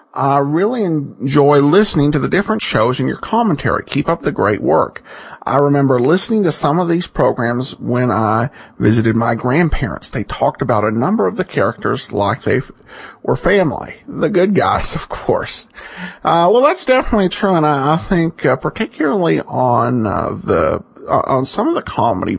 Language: English